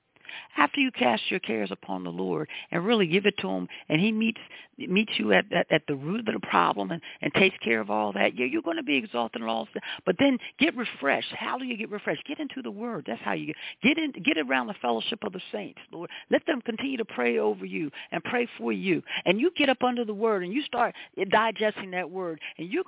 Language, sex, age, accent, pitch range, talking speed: English, female, 50-69, American, 185-290 Hz, 250 wpm